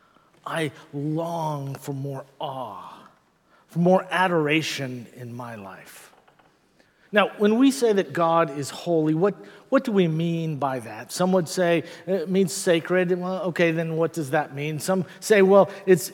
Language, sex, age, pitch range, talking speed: English, male, 50-69, 150-195 Hz, 160 wpm